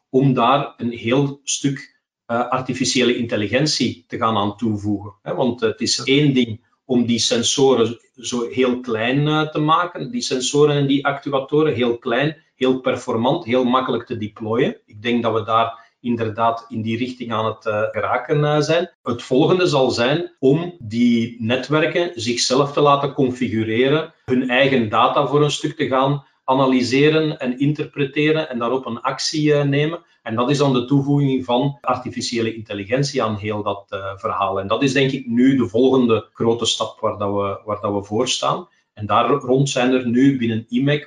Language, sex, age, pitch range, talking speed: Dutch, male, 40-59, 115-140 Hz, 170 wpm